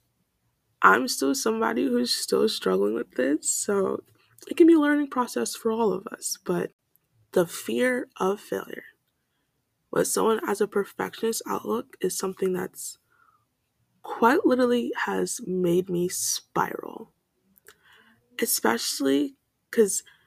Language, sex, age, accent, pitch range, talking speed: English, female, 20-39, American, 180-240 Hz, 120 wpm